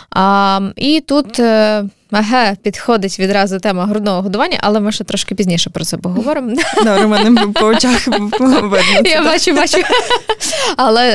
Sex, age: female, 20-39